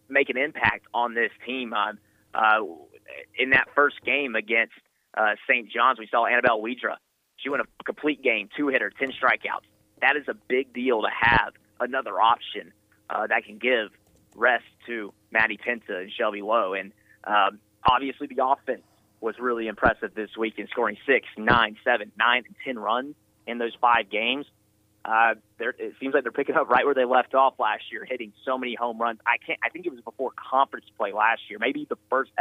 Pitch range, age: 105-130 Hz, 30-49